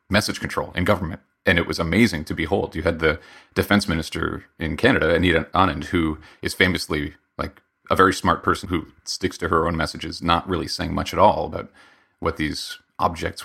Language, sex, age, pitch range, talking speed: English, male, 30-49, 80-100 Hz, 190 wpm